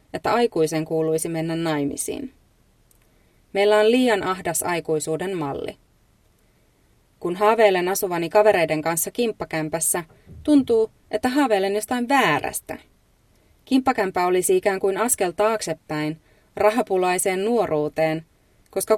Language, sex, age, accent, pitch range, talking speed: Finnish, female, 30-49, native, 160-210 Hz, 100 wpm